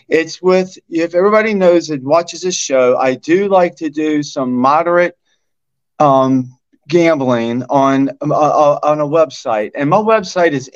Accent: American